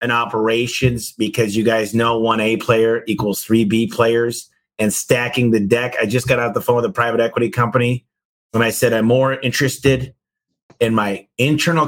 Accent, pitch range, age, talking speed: American, 110-130 Hz, 30-49, 185 wpm